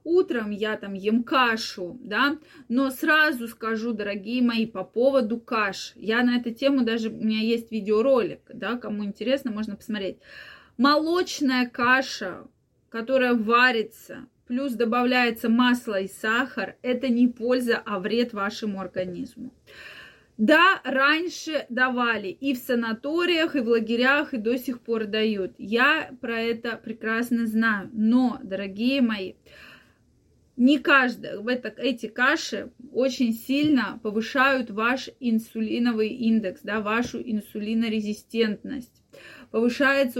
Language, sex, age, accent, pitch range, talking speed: Russian, female, 20-39, native, 220-260 Hz, 120 wpm